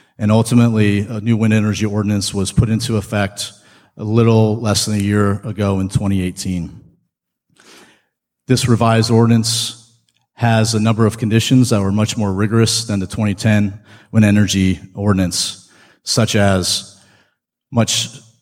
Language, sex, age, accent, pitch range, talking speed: English, male, 40-59, American, 100-110 Hz, 135 wpm